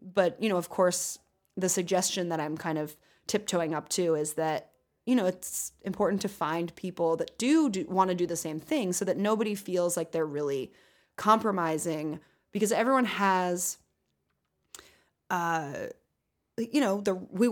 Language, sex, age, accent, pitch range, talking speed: English, female, 20-39, American, 170-205 Hz, 165 wpm